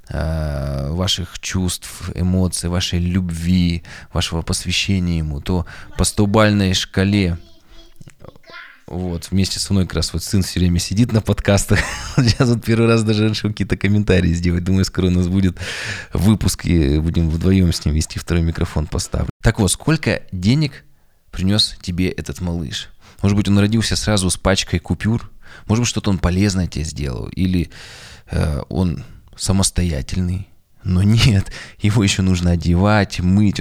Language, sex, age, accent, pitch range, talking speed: Russian, male, 20-39, native, 85-100 Hz, 150 wpm